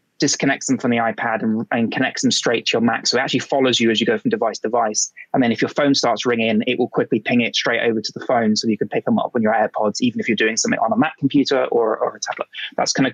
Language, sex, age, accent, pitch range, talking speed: English, male, 20-39, British, 120-150 Hz, 305 wpm